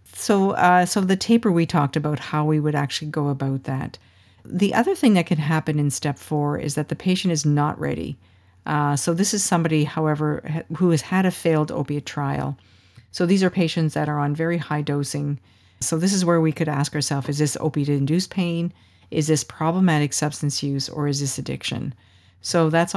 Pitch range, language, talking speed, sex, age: 140-170 Hz, English, 200 wpm, female, 50-69